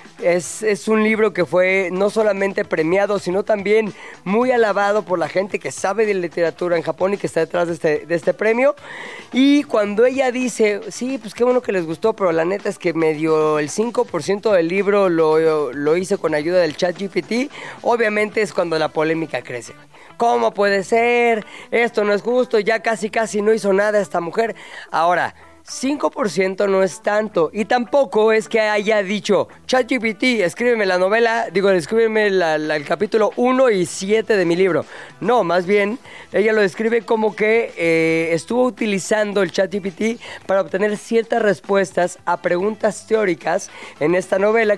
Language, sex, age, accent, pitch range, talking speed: Spanish, female, 30-49, Mexican, 175-225 Hz, 175 wpm